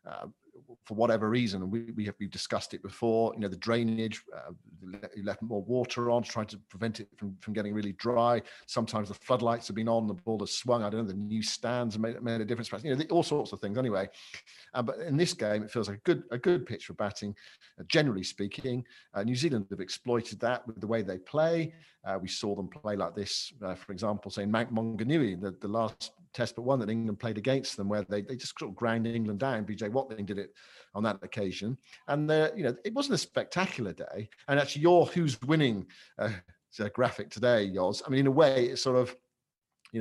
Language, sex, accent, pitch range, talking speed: English, male, British, 105-125 Hz, 230 wpm